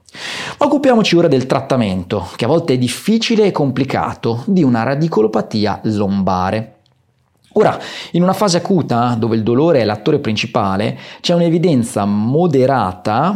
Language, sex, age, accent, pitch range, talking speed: Italian, male, 30-49, native, 110-165 Hz, 130 wpm